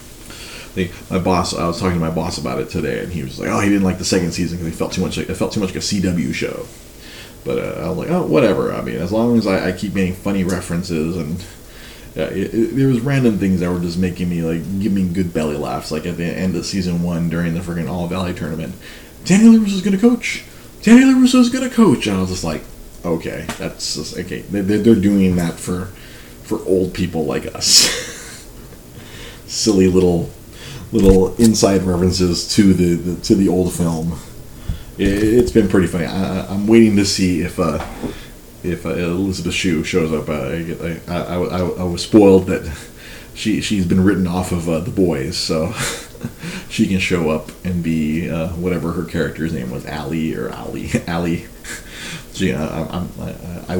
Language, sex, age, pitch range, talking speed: English, male, 30-49, 85-100 Hz, 205 wpm